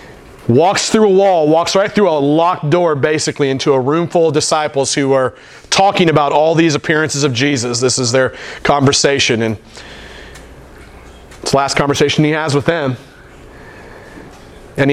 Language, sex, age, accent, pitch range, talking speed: English, male, 40-59, American, 145-195 Hz, 160 wpm